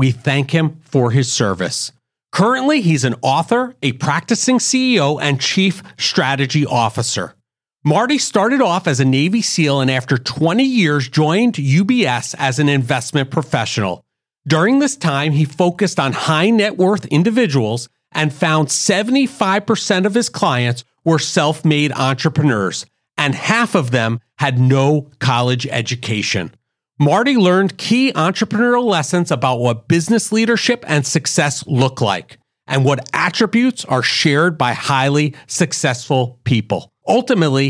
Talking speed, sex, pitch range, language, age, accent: 135 wpm, male, 135-195 Hz, English, 40-59, American